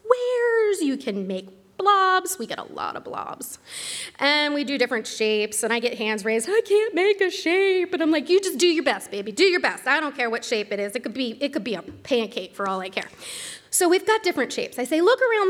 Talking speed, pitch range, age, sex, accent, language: 255 wpm, 215-330 Hz, 30-49, female, American, English